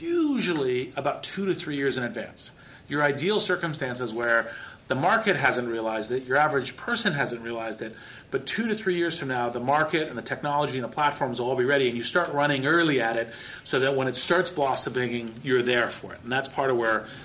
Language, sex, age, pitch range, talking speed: English, male, 40-59, 125-155 Hz, 225 wpm